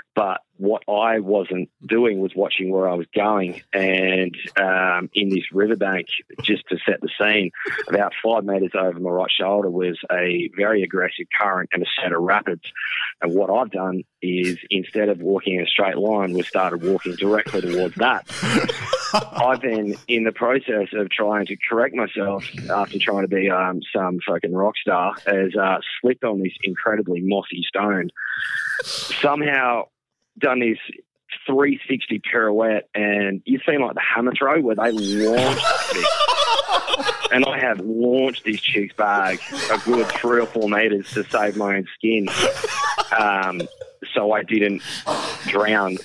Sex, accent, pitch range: male, Australian, 95-115 Hz